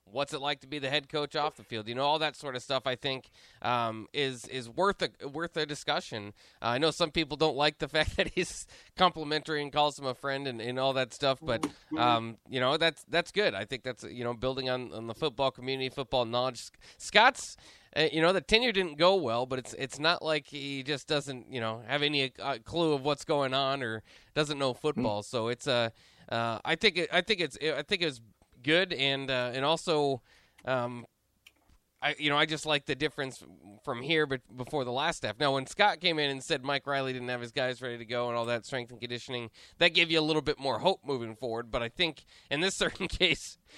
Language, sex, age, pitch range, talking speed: English, male, 20-39, 120-150 Hz, 245 wpm